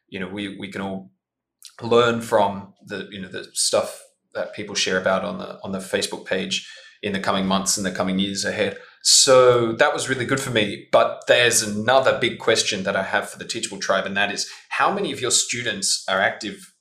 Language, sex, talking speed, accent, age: English, male, 220 wpm, Australian, 20-39